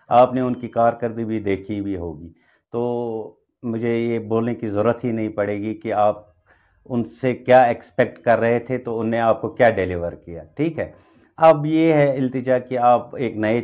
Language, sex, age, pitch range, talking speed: Urdu, male, 50-69, 105-130 Hz, 200 wpm